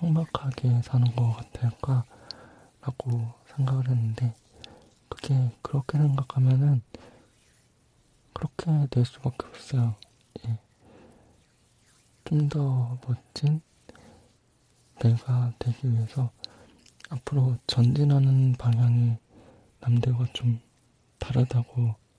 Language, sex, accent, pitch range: Korean, male, native, 115-130 Hz